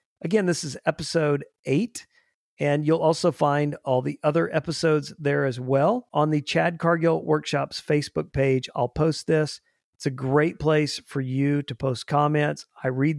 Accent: American